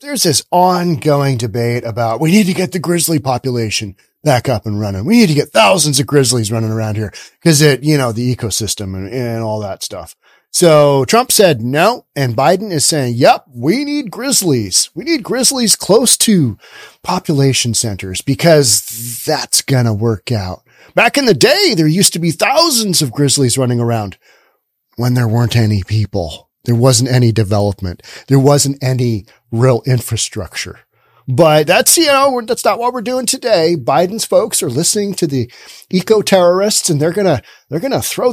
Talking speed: 175 wpm